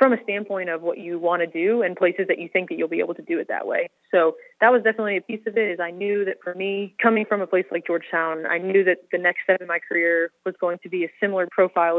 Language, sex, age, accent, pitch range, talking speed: English, female, 20-39, American, 170-190 Hz, 295 wpm